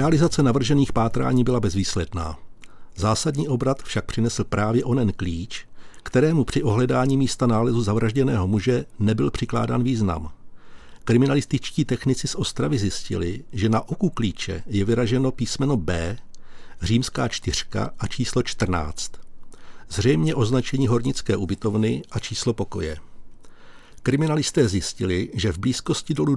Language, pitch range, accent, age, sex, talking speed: Czech, 100-130 Hz, native, 60-79, male, 120 wpm